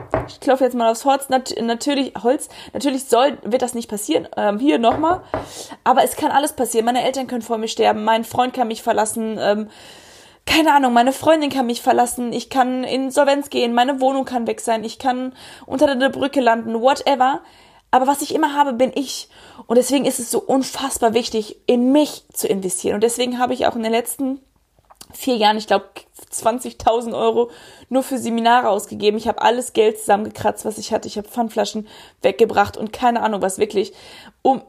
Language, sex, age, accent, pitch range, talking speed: German, female, 20-39, German, 220-260 Hz, 190 wpm